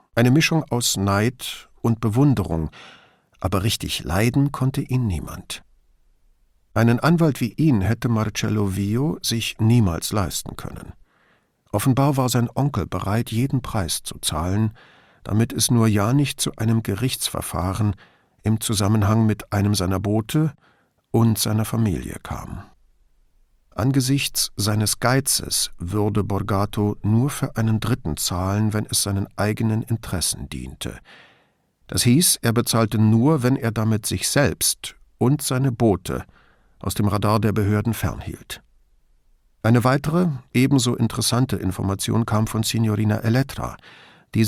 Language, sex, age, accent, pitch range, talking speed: English, male, 50-69, German, 100-125 Hz, 130 wpm